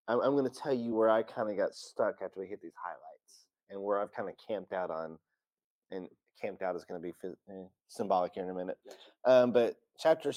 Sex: male